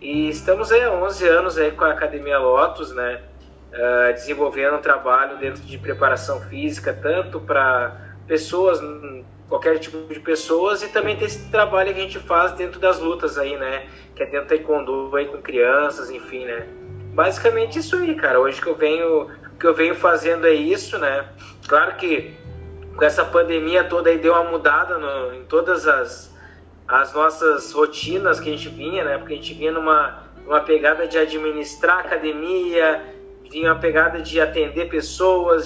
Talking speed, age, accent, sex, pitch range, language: 175 wpm, 20-39, Brazilian, male, 145-190 Hz, Portuguese